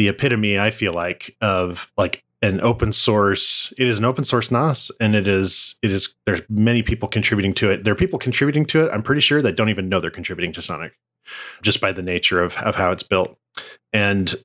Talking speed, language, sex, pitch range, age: 225 wpm, English, male, 100-125 Hz, 30-49